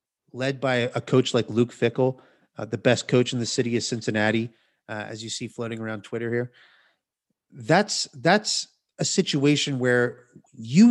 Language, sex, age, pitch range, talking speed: English, male, 30-49, 120-165 Hz, 165 wpm